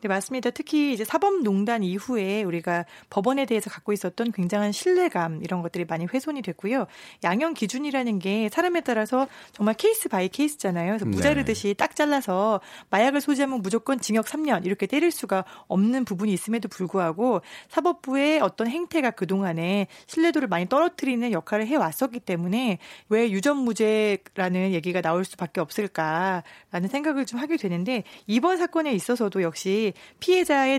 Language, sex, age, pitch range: Korean, female, 40-59, 195-275 Hz